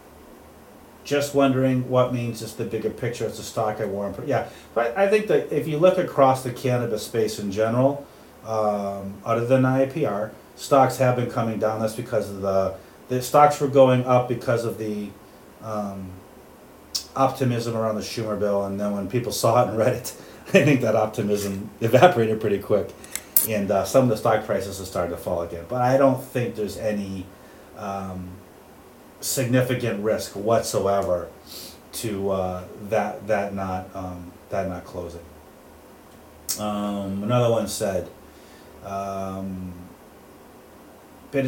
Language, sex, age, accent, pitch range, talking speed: English, male, 30-49, American, 100-125 Hz, 155 wpm